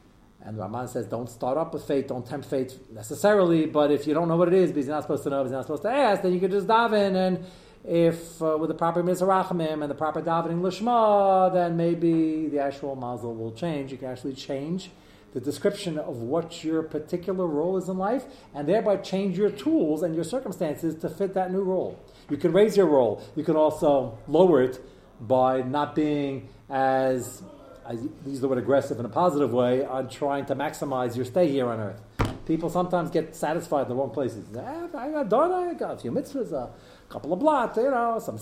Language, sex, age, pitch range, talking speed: English, male, 40-59, 140-205 Hz, 220 wpm